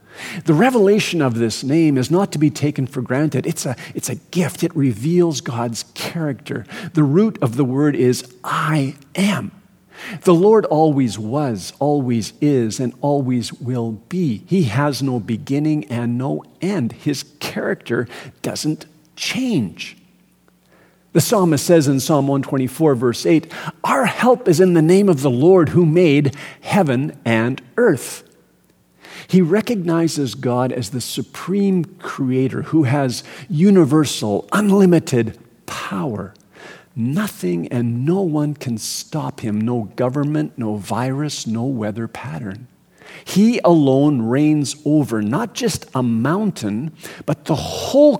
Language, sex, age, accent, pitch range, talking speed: English, male, 50-69, American, 125-175 Hz, 135 wpm